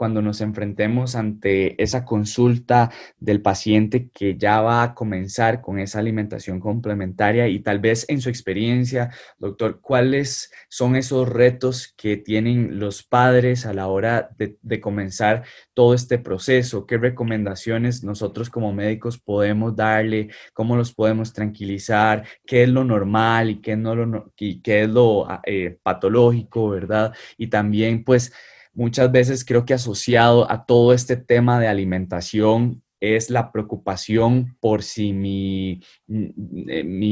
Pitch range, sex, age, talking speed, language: 105-120 Hz, male, 20-39, 135 wpm, Spanish